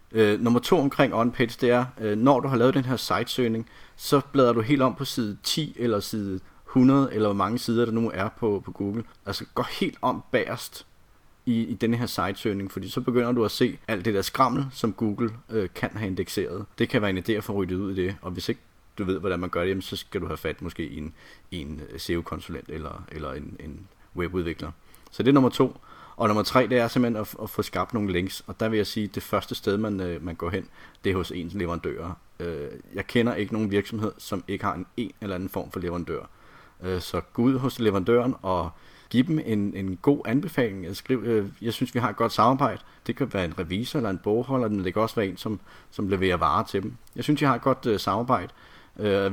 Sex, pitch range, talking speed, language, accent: male, 95-120 Hz, 235 wpm, Danish, native